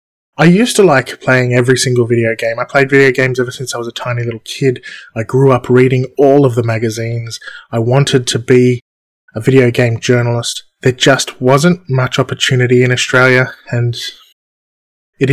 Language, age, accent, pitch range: English, 20-39, Australian, 120-130 Hz